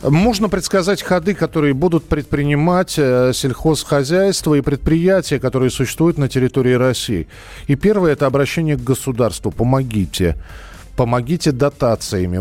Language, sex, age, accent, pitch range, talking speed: Russian, male, 40-59, native, 110-155 Hz, 110 wpm